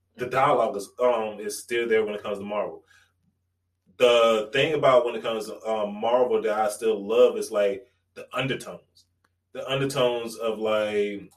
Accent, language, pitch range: American, English, 105-125 Hz